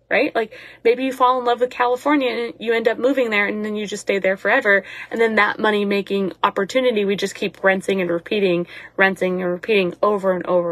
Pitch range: 200-265 Hz